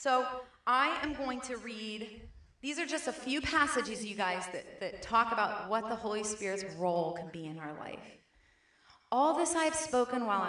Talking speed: 195 wpm